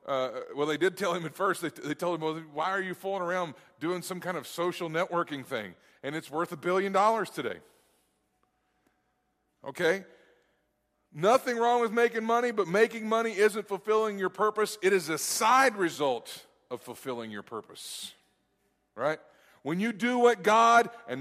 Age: 40-59